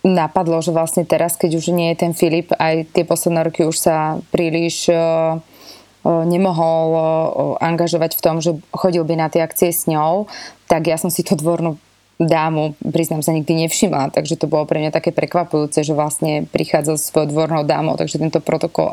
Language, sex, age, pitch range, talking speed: Slovak, female, 20-39, 160-180 Hz, 185 wpm